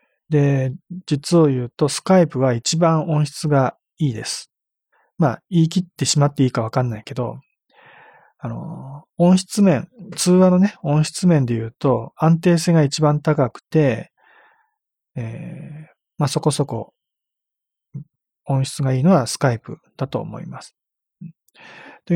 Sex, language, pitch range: male, Japanese, 130-165 Hz